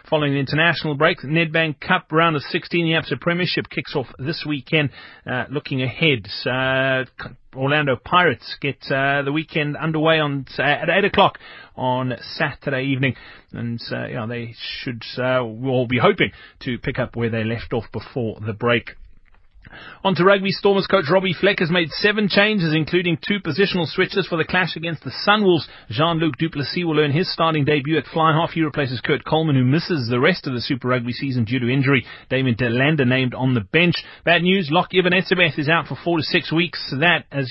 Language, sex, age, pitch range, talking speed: English, male, 30-49, 130-165 Hz, 195 wpm